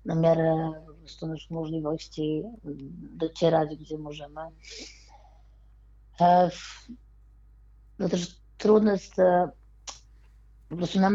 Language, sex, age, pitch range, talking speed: Polish, female, 20-39, 150-175 Hz, 80 wpm